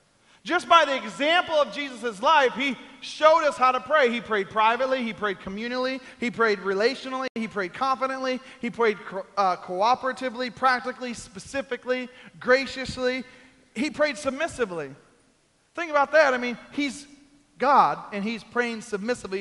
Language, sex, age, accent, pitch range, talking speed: English, male, 40-59, American, 190-265 Hz, 145 wpm